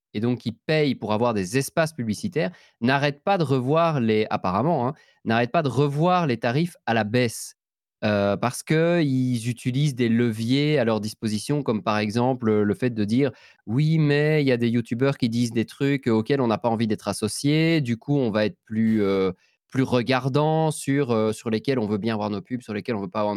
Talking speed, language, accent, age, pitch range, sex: 220 wpm, French, French, 20-39, 110-150 Hz, male